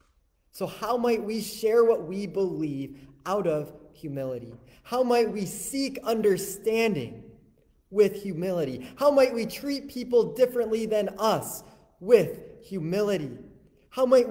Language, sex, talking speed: English, male, 125 wpm